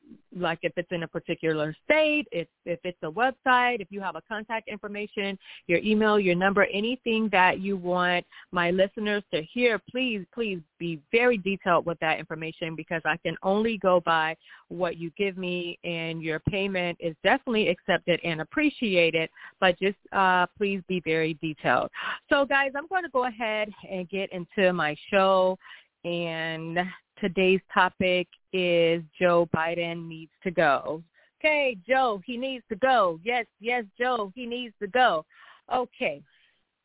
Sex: female